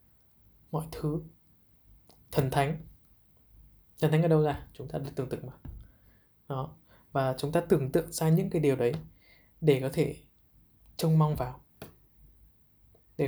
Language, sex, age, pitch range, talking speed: Vietnamese, male, 20-39, 115-160 Hz, 150 wpm